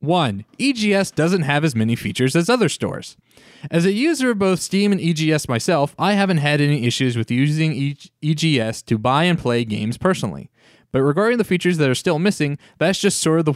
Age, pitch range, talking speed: 20-39, 120-170 Hz, 210 wpm